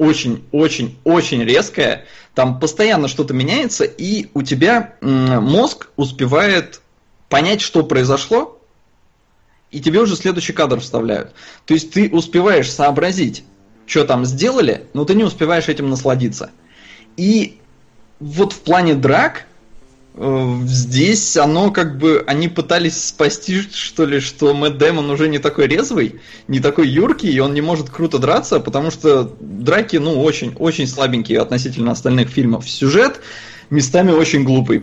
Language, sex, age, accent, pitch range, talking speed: Russian, male, 20-39, native, 125-160 Hz, 130 wpm